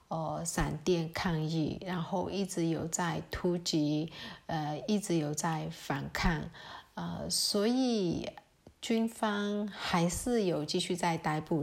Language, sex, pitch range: Chinese, female, 160-195 Hz